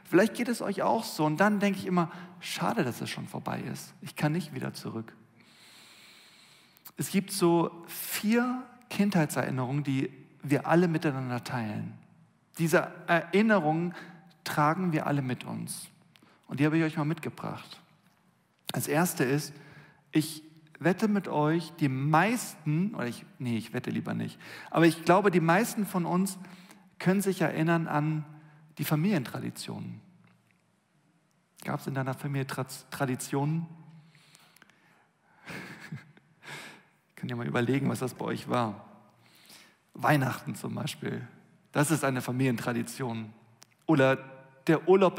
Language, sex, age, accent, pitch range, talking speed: German, male, 40-59, German, 135-175 Hz, 135 wpm